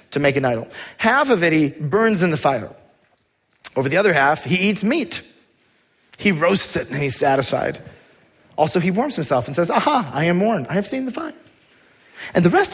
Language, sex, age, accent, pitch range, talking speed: English, male, 30-49, American, 135-215 Hz, 205 wpm